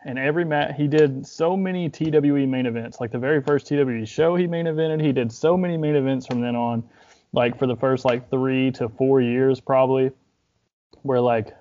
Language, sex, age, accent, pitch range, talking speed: English, male, 20-39, American, 120-145 Hz, 205 wpm